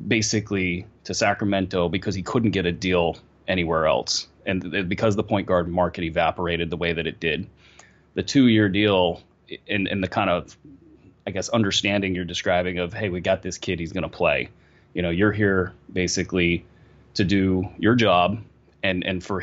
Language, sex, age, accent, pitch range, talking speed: English, male, 30-49, American, 90-105 Hz, 175 wpm